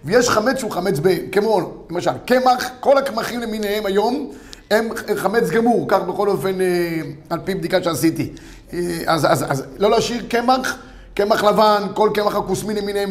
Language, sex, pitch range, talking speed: Hebrew, male, 185-240 Hz, 165 wpm